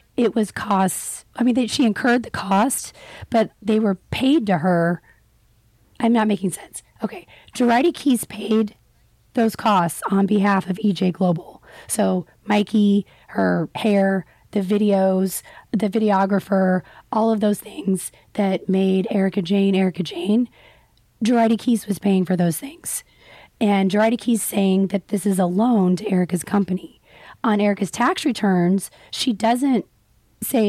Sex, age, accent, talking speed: female, 30-49, American, 145 wpm